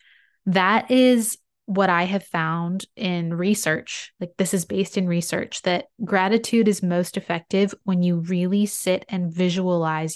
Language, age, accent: English, 20-39, American